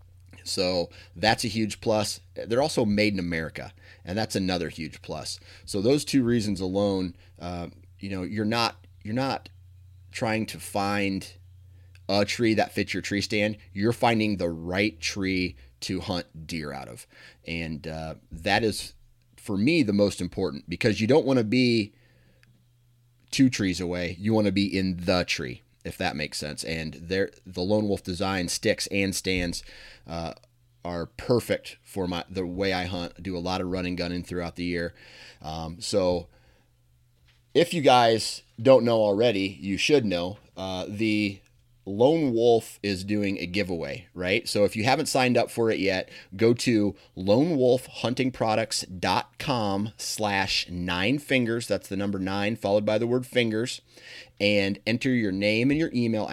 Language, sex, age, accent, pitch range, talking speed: English, male, 30-49, American, 90-115 Hz, 165 wpm